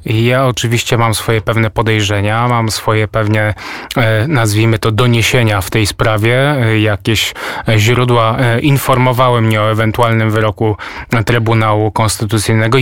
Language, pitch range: Polish, 115-130 Hz